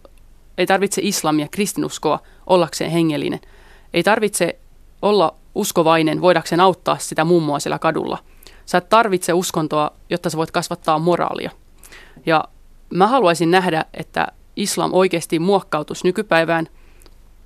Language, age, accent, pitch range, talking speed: Finnish, 30-49, native, 160-185 Hz, 115 wpm